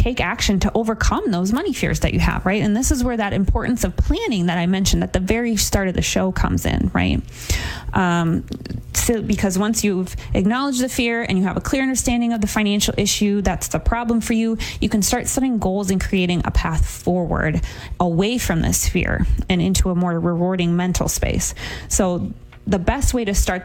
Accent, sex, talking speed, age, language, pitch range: American, female, 205 wpm, 20-39, English, 175-225 Hz